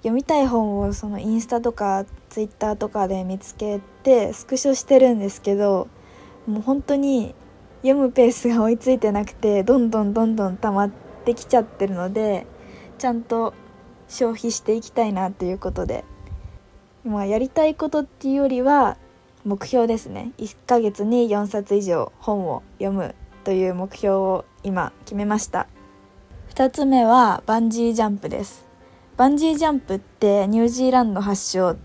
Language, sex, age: Japanese, female, 20-39